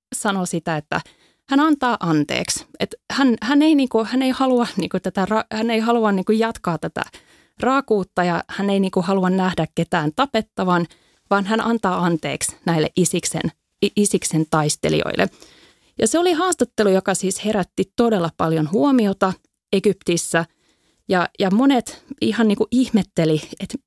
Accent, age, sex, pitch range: native, 30-49, female, 175-235 Hz